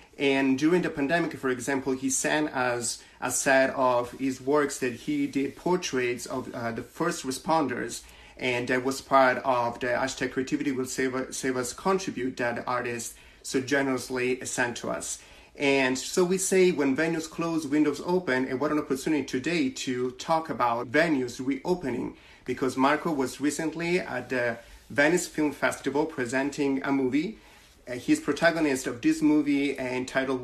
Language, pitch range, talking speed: English, 130-150 Hz, 165 wpm